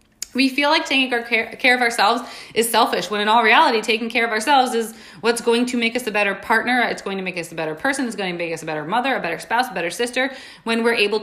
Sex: female